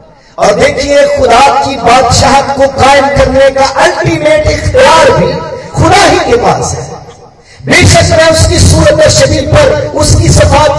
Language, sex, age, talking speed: Hindi, male, 50-69, 135 wpm